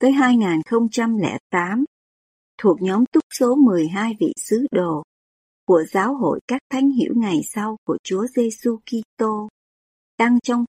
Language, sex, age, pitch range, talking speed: Vietnamese, male, 60-79, 180-250 Hz, 135 wpm